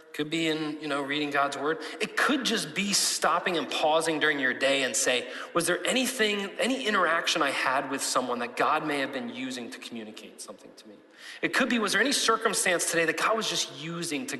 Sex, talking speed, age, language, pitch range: male, 225 wpm, 30-49, English, 145-195 Hz